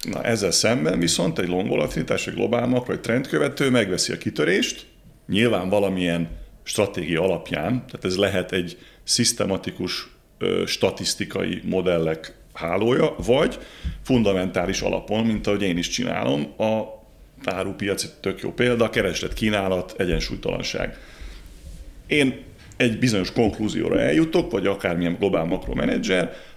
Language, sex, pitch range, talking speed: Hungarian, male, 90-125 Hz, 120 wpm